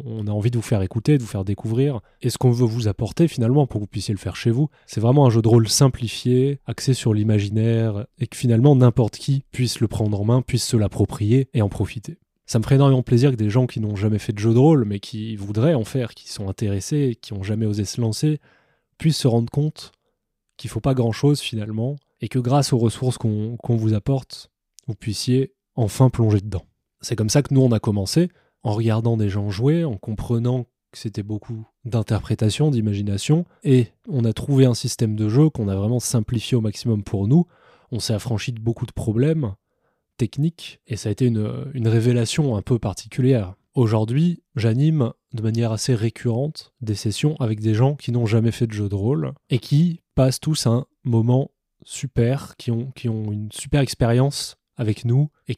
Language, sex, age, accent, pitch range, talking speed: French, male, 20-39, French, 110-135 Hz, 210 wpm